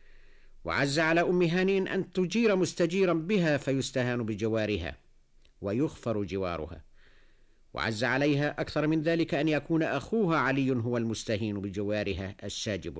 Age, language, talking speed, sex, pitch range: 50-69, Arabic, 120 wpm, male, 95-150 Hz